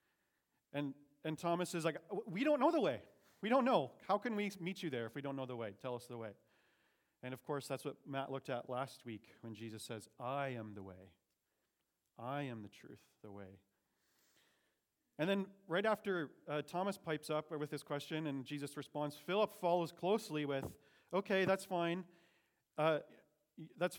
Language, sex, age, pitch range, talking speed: English, male, 40-59, 135-180 Hz, 190 wpm